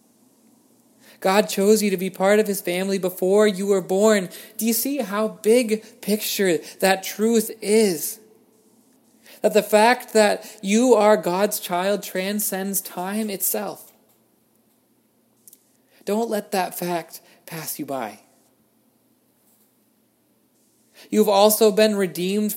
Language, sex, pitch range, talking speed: English, male, 175-215 Hz, 115 wpm